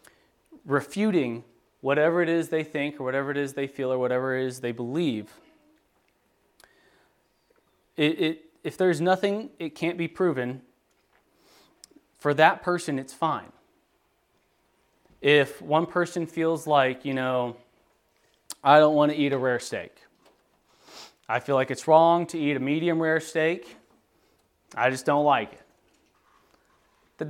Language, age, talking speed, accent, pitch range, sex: English, 30-49, 135 wpm, American, 125-170 Hz, male